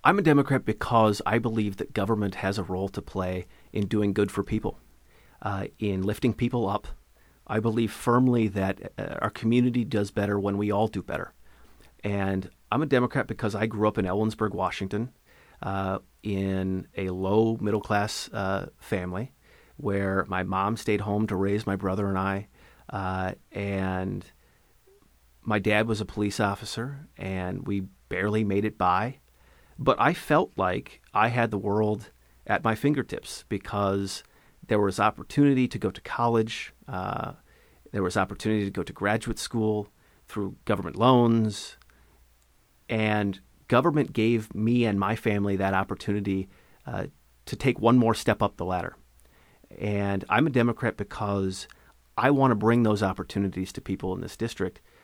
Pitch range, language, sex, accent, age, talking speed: 95-115 Hz, English, male, American, 30-49, 160 wpm